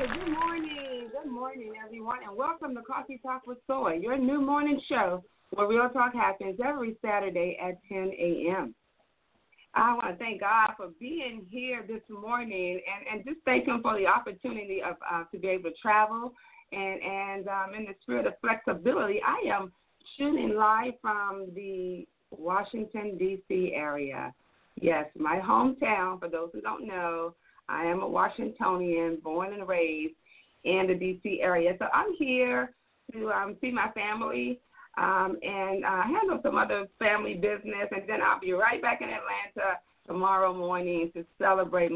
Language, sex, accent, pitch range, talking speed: English, female, American, 180-245 Hz, 165 wpm